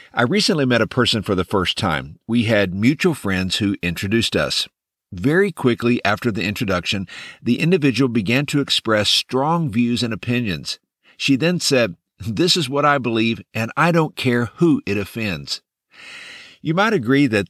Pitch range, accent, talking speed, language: 100-140 Hz, American, 170 wpm, English